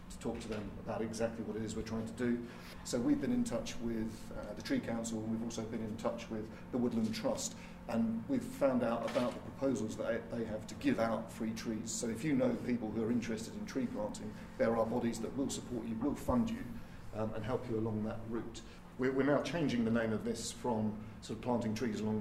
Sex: male